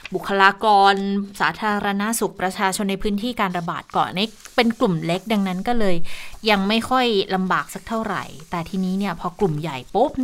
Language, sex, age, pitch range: Thai, female, 20-39, 170-210 Hz